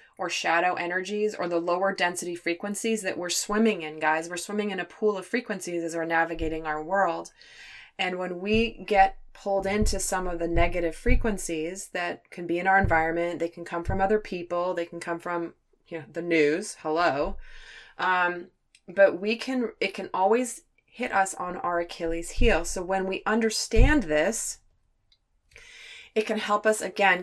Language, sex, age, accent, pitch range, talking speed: English, female, 20-39, American, 170-205 Hz, 175 wpm